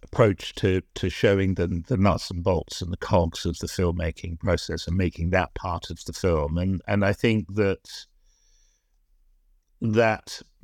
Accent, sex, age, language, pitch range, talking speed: British, male, 50-69, English, 95-115 Hz, 165 wpm